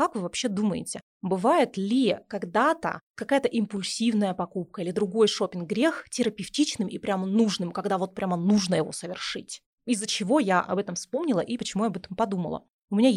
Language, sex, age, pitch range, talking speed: Russian, female, 20-39, 185-235 Hz, 175 wpm